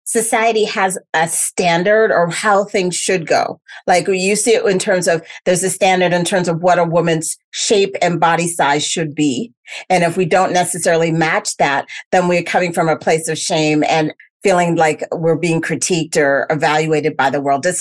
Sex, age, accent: female, 40-59, American